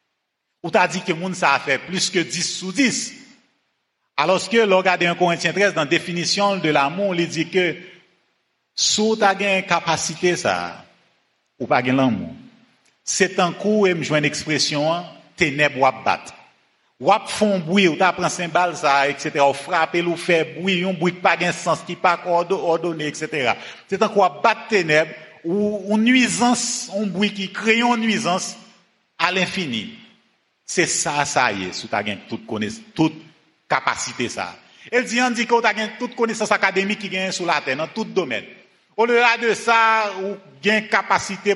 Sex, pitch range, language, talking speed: male, 175-220 Hz, English, 180 wpm